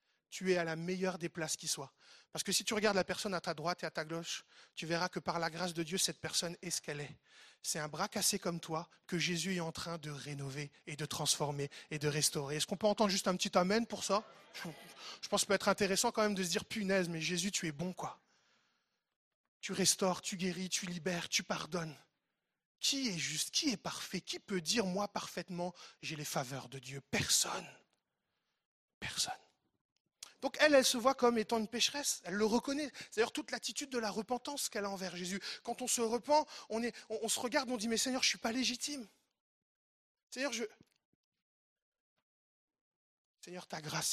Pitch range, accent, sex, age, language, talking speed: 170-225 Hz, French, male, 20-39, French, 215 wpm